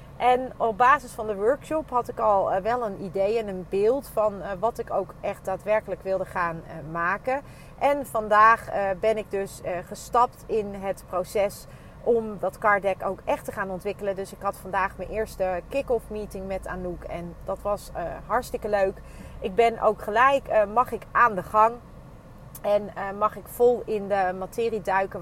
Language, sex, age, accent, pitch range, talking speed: Dutch, female, 30-49, Dutch, 185-235 Hz, 175 wpm